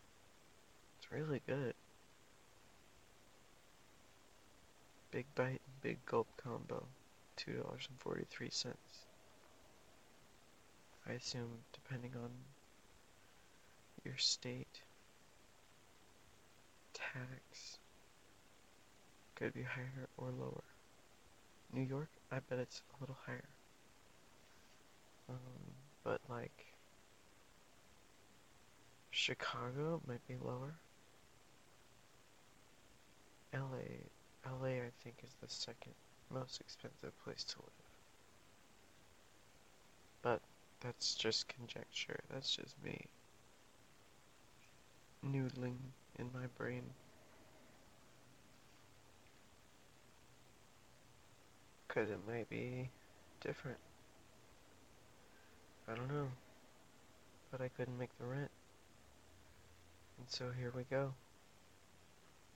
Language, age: English, 40-59